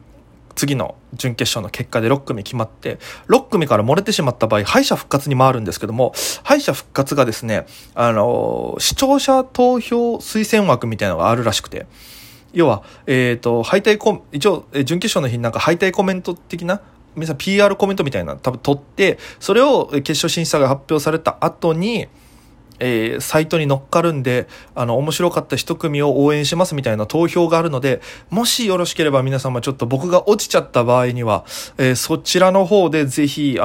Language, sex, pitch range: Japanese, male, 130-190 Hz